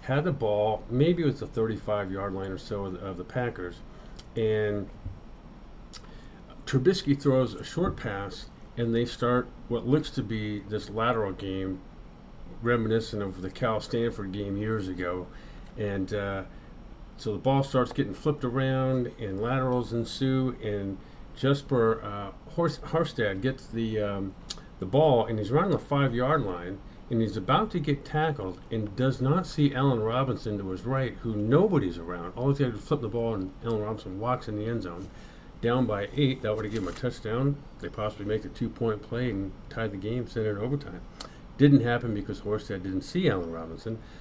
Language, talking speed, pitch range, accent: English, 180 wpm, 100-135 Hz, American